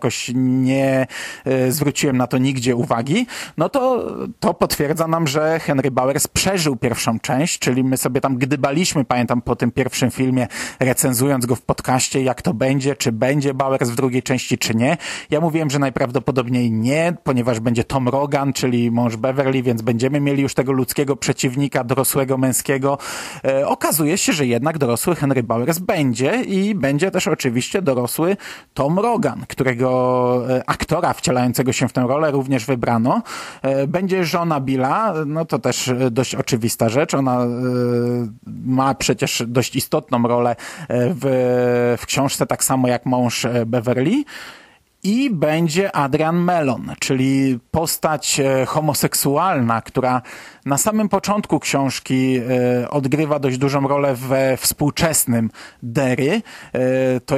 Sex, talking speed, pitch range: male, 135 wpm, 125-155 Hz